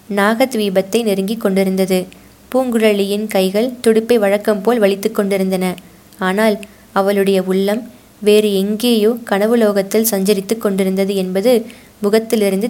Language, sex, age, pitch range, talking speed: Tamil, female, 20-39, 195-225 Hz, 95 wpm